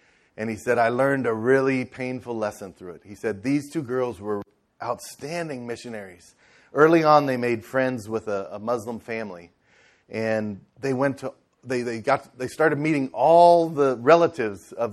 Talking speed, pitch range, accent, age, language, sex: 175 wpm, 110-130 Hz, American, 30-49, English, male